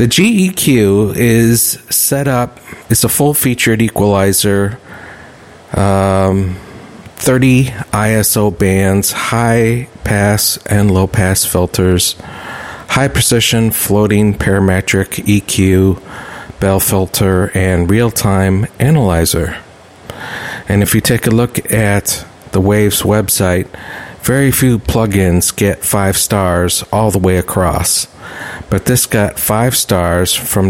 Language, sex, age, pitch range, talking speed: English, male, 50-69, 95-120 Hz, 100 wpm